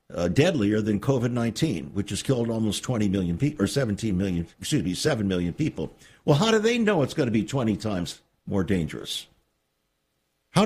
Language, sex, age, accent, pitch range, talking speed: English, male, 60-79, American, 90-155 Hz, 190 wpm